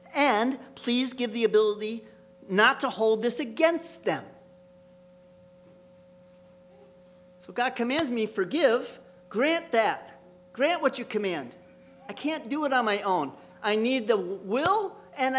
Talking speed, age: 135 wpm, 40-59